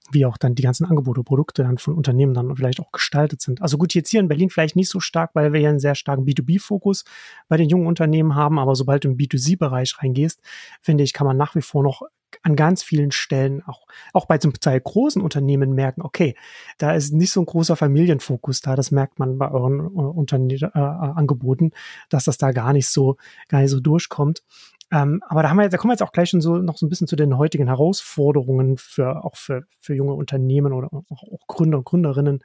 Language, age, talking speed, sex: German, 30-49, 230 wpm, male